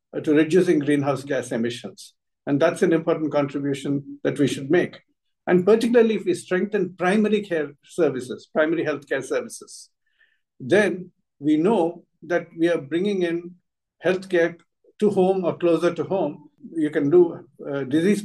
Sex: male